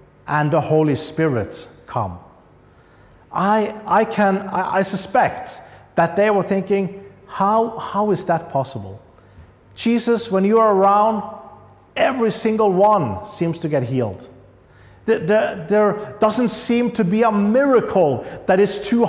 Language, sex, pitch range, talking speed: English, male, 140-210 Hz, 140 wpm